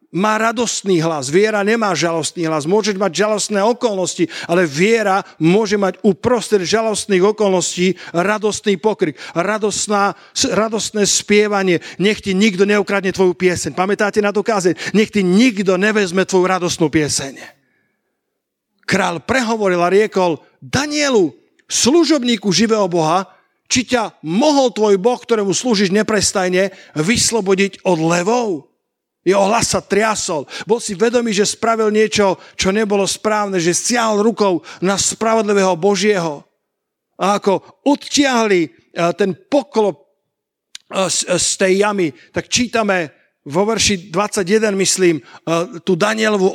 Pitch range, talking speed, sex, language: 185-220 Hz, 120 wpm, male, Slovak